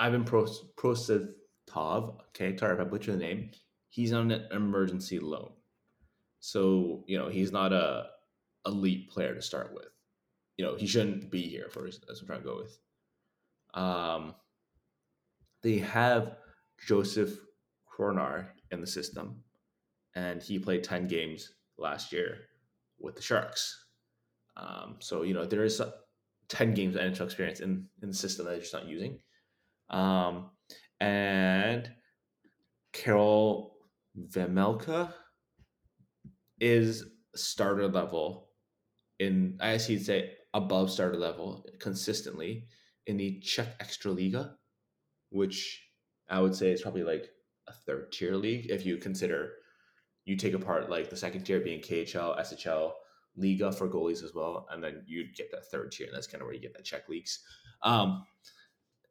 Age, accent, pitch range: 20-39, American, 95-110 Hz